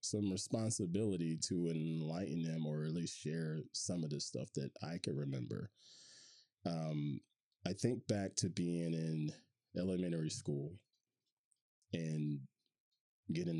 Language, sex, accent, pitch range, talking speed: English, male, American, 75-95 Hz, 125 wpm